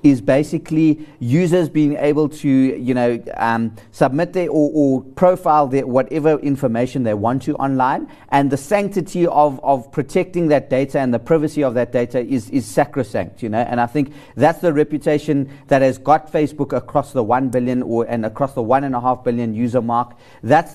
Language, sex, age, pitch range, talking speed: English, male, 30-49, 130-155 Hz, 190 wpm